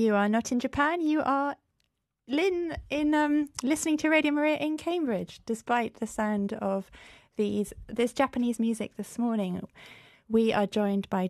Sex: female